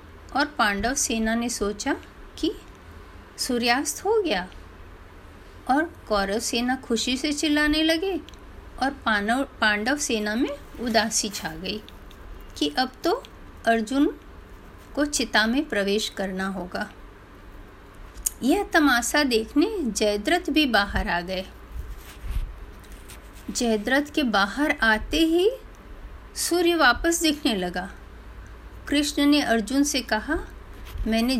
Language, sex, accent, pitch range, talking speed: Hindi, female, native, 210-295 Hz, 110 wpm